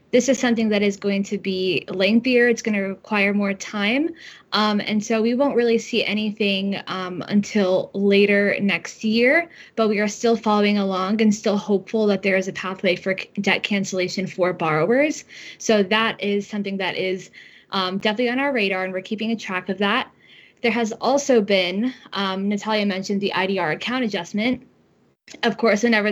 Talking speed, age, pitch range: 180 wpm, 10-29, 190-215 Hz